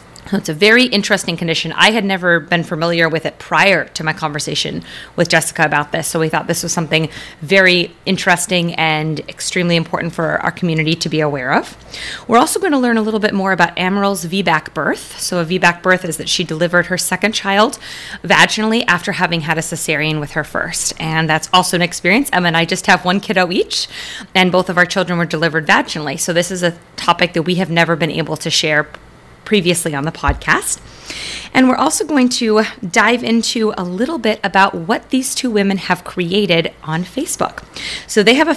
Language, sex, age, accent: English, female, 30-49, American